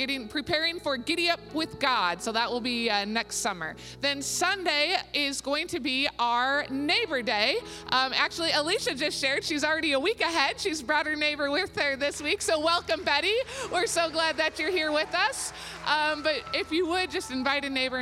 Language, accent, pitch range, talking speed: English, American, 215-290 Hz, 200 wpm